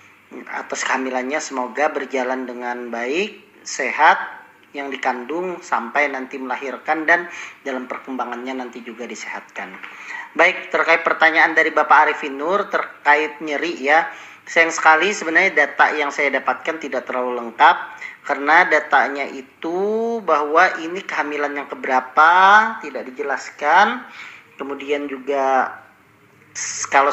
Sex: male